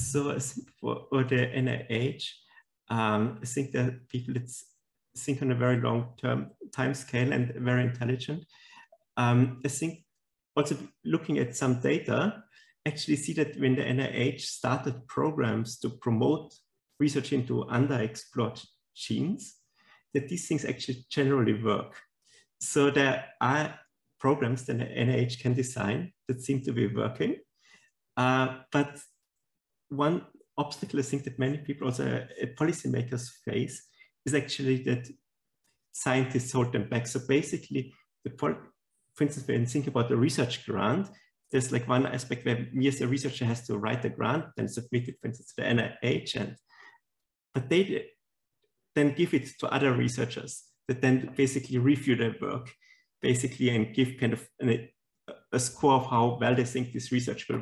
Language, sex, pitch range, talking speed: English, male, 125-140 Hz, 155 wpm